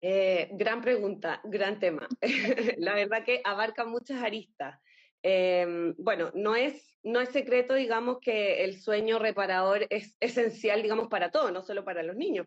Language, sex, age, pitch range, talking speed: Spanish, female, 20-39, 200-265 Hz, 160 wpm